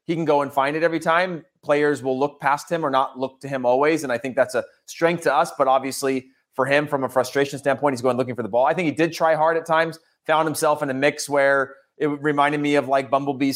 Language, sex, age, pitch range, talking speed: English, male, 30-49, 140-190 Hz, 270 wpm